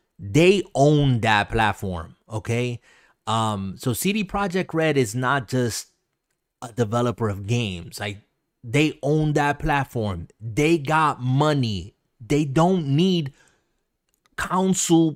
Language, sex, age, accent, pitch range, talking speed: English, male, 30-49, American, 120-155 Hz, 115 wpm